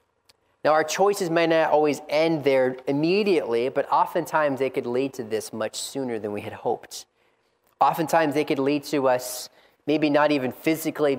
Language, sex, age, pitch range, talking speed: English, male, 30-49, 130-165 Hz, 170 wpm